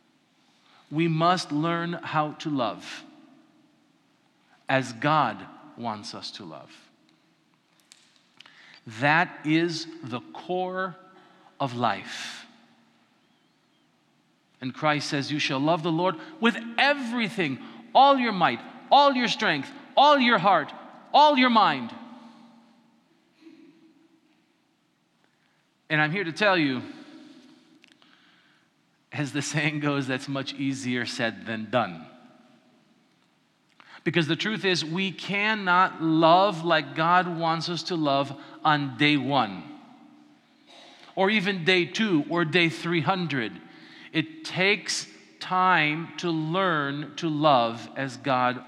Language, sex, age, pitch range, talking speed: English, male, 40-59, 150-230 Hz, 110 wpm